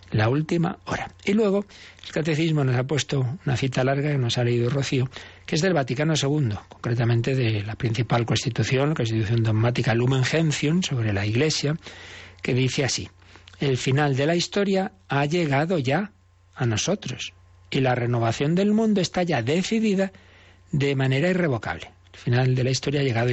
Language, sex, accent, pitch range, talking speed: Spanish, male, Spanish, 115-160 Hz, 170 wpm